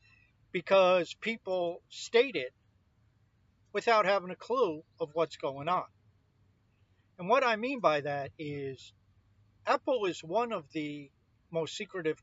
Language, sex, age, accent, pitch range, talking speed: English, male, 50-69, American, 110-175 Hz, 130 wpm